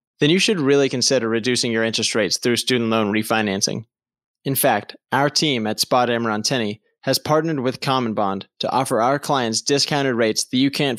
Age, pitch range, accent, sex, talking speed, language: 20-39, 115-140 Hz, American, male, 180 wpm, English